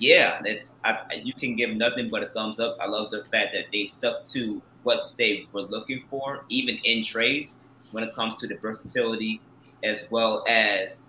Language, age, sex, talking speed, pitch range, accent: English, 20-39, male, 200 wpm, 110-135 Hz, American